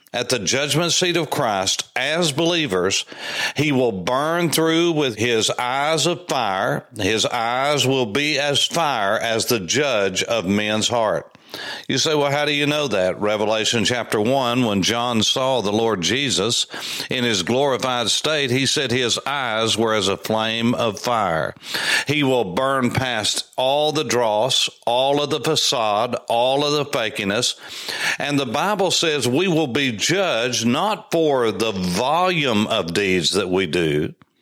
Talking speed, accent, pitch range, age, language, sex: 160 wpm, American, 120-150 Hz, 60-79, English, male